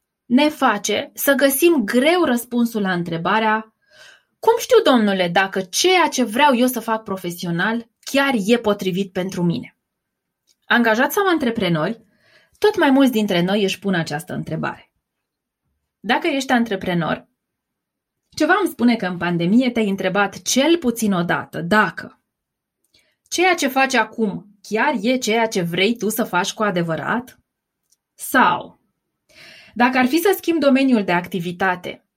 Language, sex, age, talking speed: Romanian, female, 20-39, 140 wpm